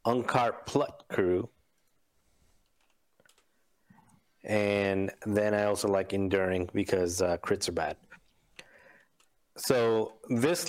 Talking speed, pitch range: 90 wpm, 100-115 Hz